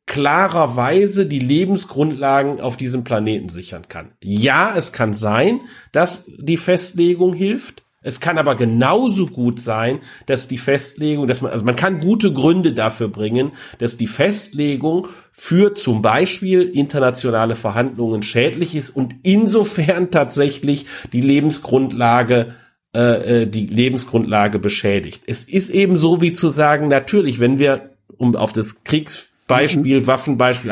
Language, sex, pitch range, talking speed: German, male, 120-175 Hz, 135 wpm